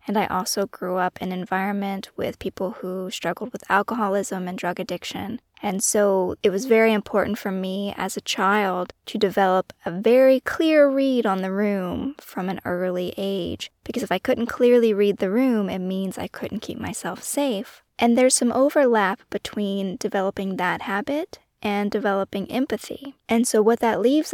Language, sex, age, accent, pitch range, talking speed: English, female, 20-39, American, 190-235 Hz, 180 wpm